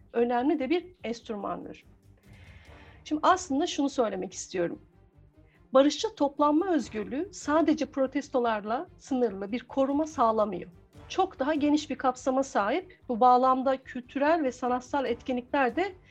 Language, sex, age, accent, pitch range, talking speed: Turkish, female, 50-69, native, 240-300 Hz, 115 wpm